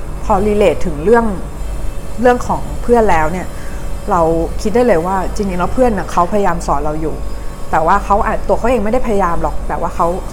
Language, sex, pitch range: Thai, female, 155-205 Hz